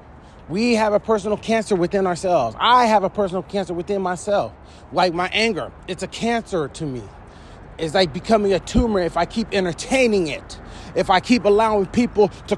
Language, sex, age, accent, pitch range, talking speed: English, male, 30-49, American, 145-215 Hz, 180 wpm